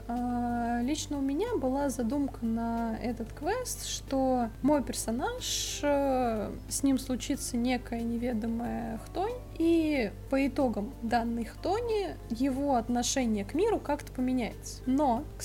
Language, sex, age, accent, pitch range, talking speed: Russian, female, 20-39, native, 230-285 Hz, 115 wpm